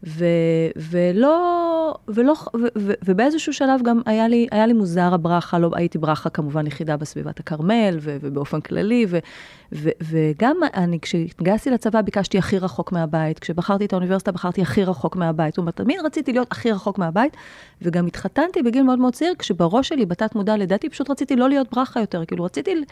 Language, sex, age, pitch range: Hebrew, female, 30-49, 175-235 Hz